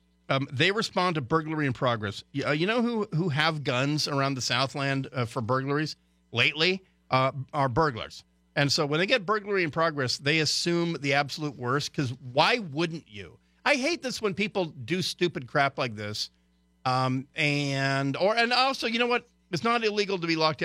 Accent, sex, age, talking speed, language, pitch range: American, male, 50-69, 190 wpm, English, 130-195 Hz